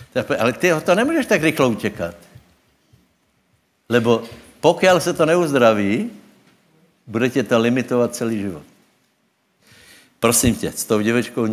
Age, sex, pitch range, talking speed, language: 70-89, male, 100-125 Hz, 125 wpm, Slovak